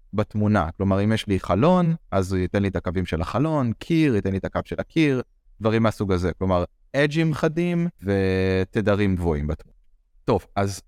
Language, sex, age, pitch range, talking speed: Hebrew, male, 30-49, 100-140 Hz, 175 wpm